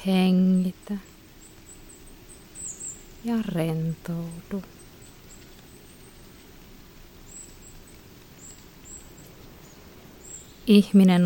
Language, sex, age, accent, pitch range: Finnish, female, 30-49, native, 175-200 Hz